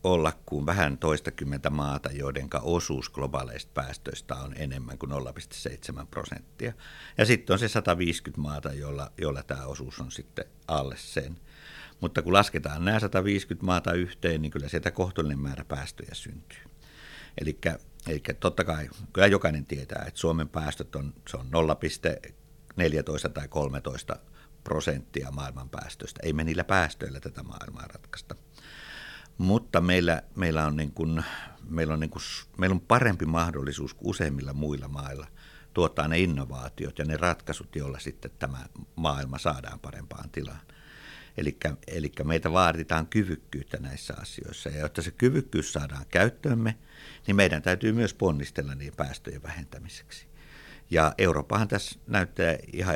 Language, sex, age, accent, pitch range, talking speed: Finnish, male, 60-79, native, 70-90 Hz, 140 wpm